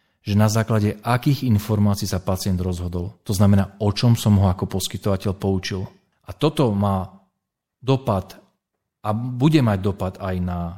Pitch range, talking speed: 100-120 Hz, 150 wpm